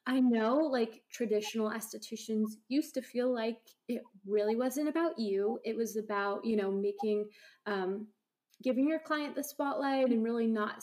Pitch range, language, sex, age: 205-230 Hz, English, female, 20-39